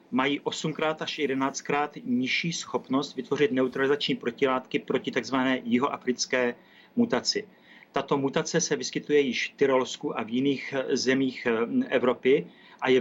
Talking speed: 125 wpm